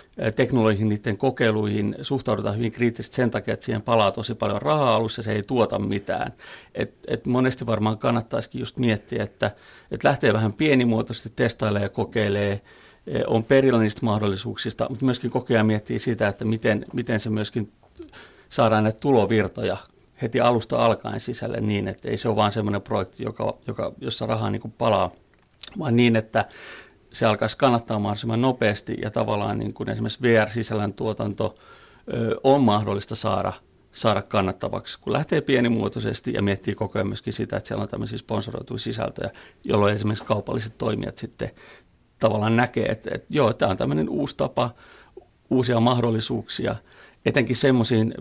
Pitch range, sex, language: 105-120 Hz, male, Finnish